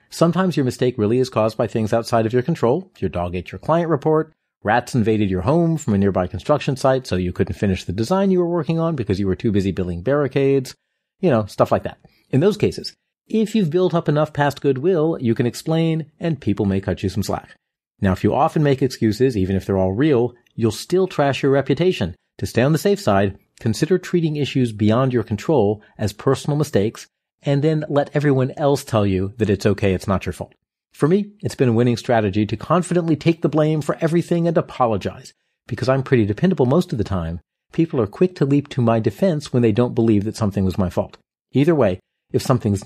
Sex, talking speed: male, 225 wpm